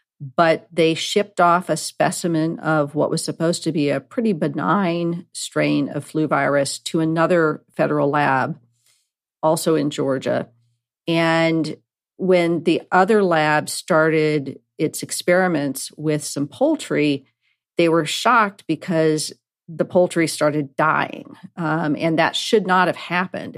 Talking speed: 130 wpm